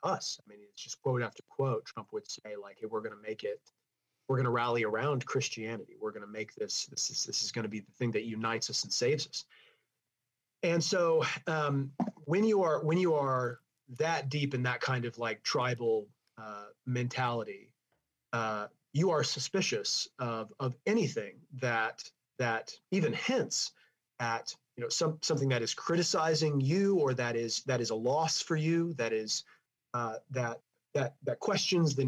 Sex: male